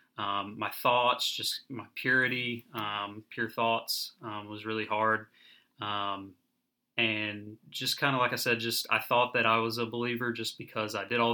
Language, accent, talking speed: English, American, 180 wpm